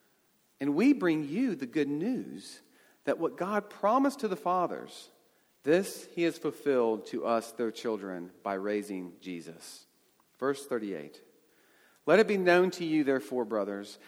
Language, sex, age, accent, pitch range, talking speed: English, male, 40-59, American, 120-180 Hz, 150 wpm